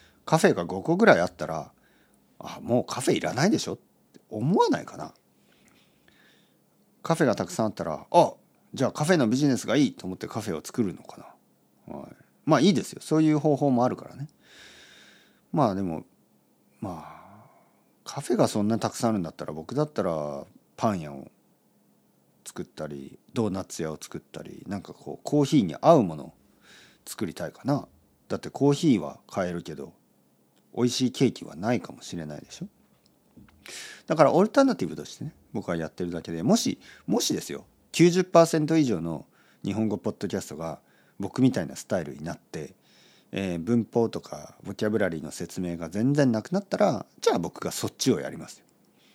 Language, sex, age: Japanese, male, 40-59